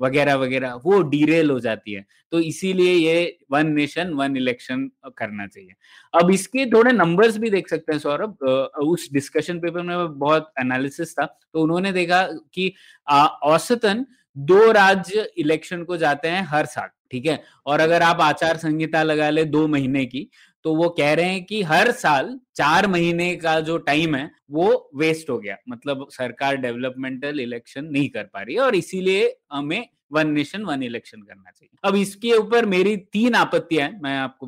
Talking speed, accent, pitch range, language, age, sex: 180 wpm, native, 145-190 Hz, Hindi, 20-39, male